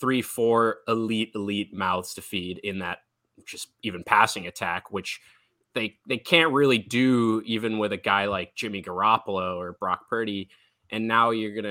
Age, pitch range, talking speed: 20-39, 90-115 Hz, 170 wpm